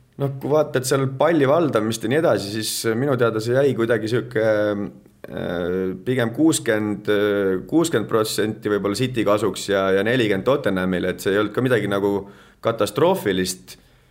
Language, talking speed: English, 150 wpm